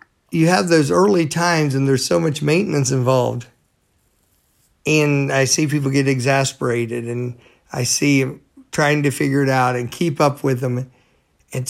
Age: 50-69